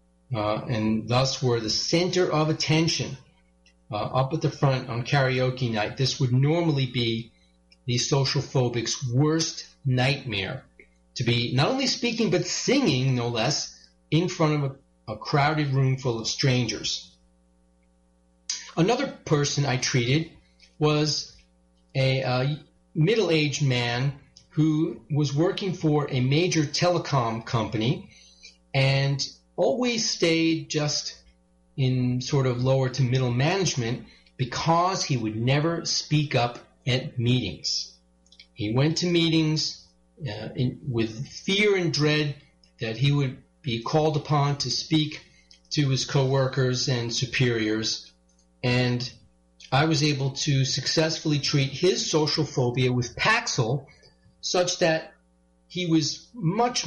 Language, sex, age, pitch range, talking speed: English, male, 40-59, 115-155 Hz, 125 wpm